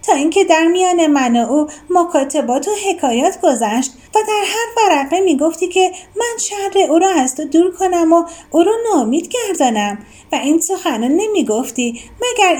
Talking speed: 175 wpm